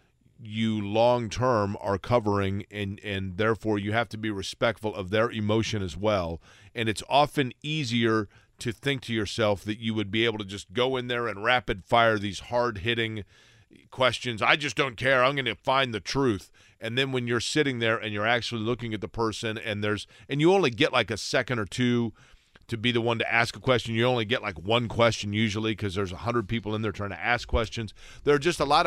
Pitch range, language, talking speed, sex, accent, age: 105-120 Hz, English, 220 wpm, male, American, 40-59